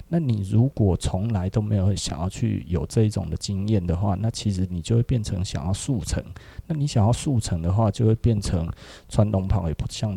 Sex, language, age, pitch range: male, Chinese, 30-49, 90-120 Hz